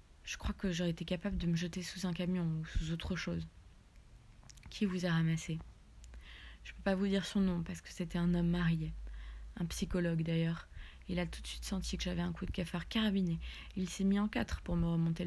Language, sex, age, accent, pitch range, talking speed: French, female, 20-39, French, 165-195 Hz, 230 wpm